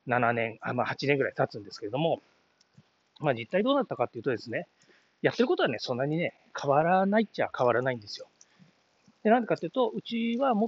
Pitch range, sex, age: 140-230 Hz, male, 40-59